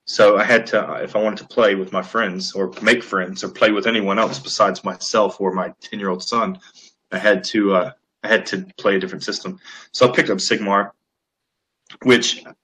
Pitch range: 95-110 Hz